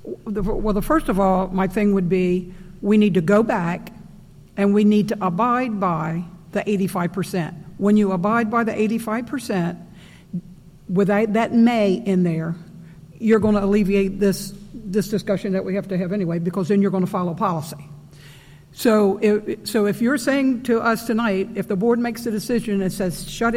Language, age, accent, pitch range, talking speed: English, 60-79, American, 185-220 Hz, 185 wpm